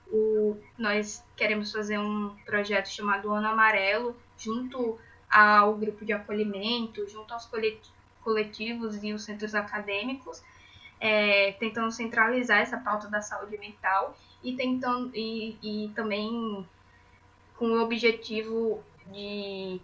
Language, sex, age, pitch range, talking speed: Portuguese, female, 10-29, 210-230 Hz, 105 wpm